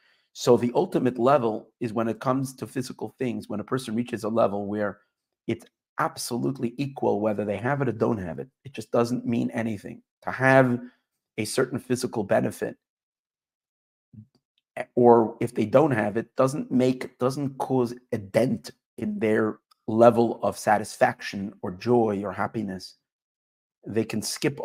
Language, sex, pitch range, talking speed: English, male, 110-130 Hz, 155 wpm